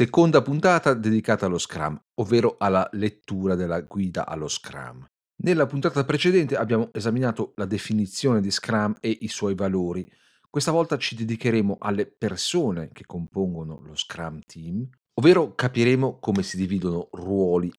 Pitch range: 95-135 Hz